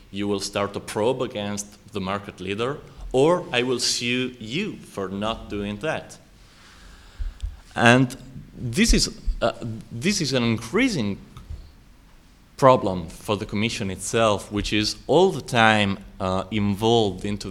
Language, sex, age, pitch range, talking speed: Italian, male, 30-49, 95-110 Hz, 135 wpm